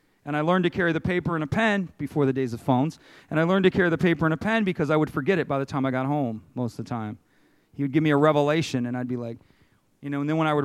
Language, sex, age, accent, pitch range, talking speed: English, male, 40-59, American, 145-210 Hz, 320 wpm